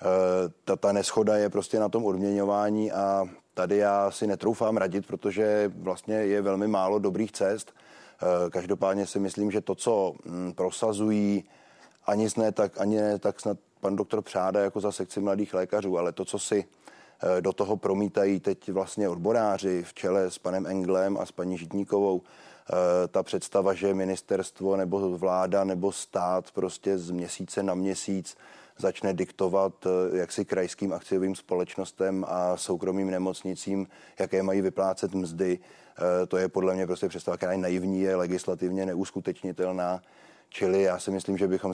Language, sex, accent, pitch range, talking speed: Czech, male, native, 90-100 Hz, 150 wpm